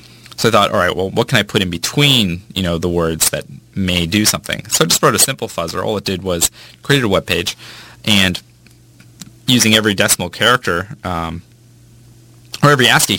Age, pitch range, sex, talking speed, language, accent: 20-39, 85-105 Hz, male, 190 wpm, English, American